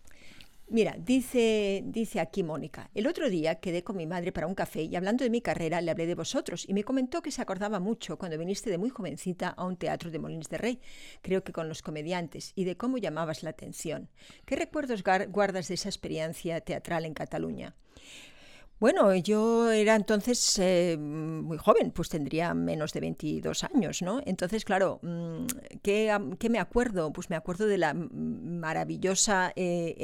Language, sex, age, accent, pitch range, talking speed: Spanish, female, 50-69, Spanish, 170-215 Hz, 180 wpm